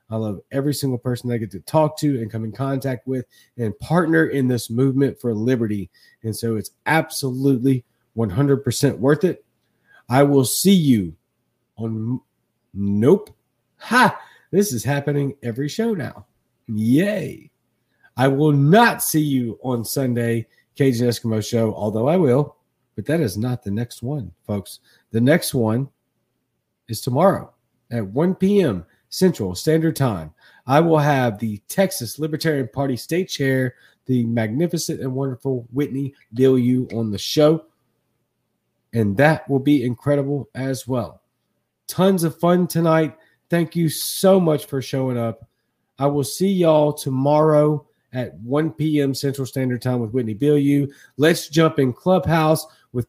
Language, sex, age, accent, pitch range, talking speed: English, male, 40-59, American, 120-150 Hz, 150 wpm